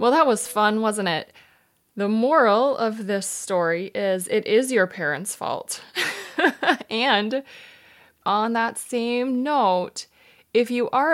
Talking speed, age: 135 wpm, 20-39